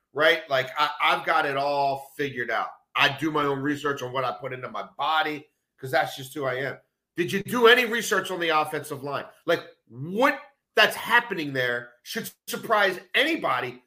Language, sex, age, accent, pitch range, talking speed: English, male, 40-59, American, 145-215 Hz, 185 wpm